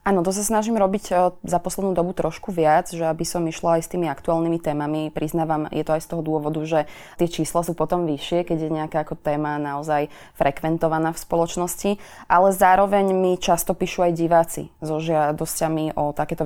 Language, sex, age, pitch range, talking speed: Slovak, female, 20-39, 155-185 Hz, 195 wpm